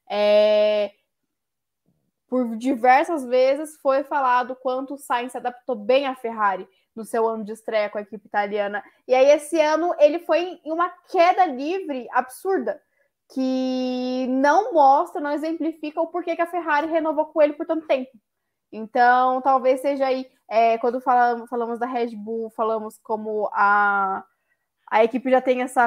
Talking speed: 160 wpm